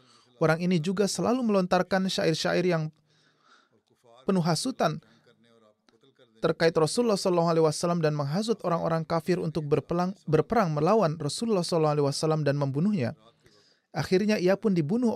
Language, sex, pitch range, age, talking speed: Indonesian, male, 145-185 Hz, 30-49, 105 wpm